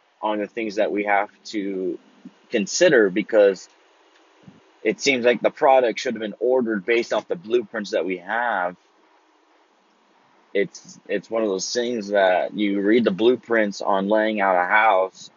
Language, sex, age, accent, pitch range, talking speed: English, male, 20-39, American, 95-120 Hz, 160 wpm